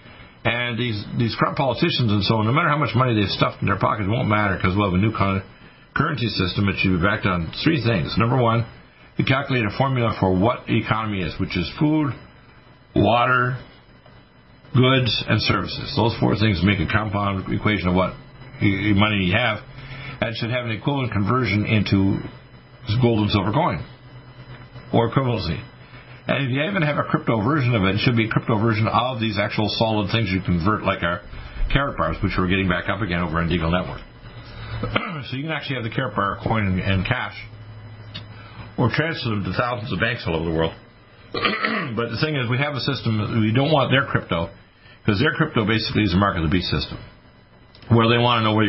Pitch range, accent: 100-125 Hz, American